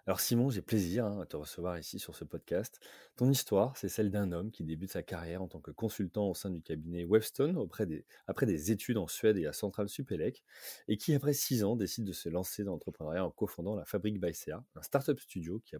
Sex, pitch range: male, 90-110 Hz